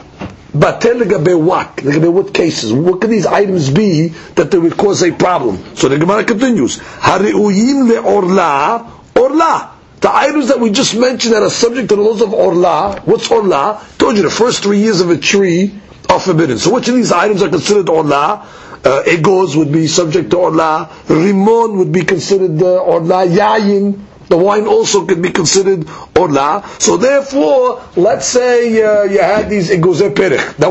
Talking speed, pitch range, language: 175 wpm, 185-235 Hz, English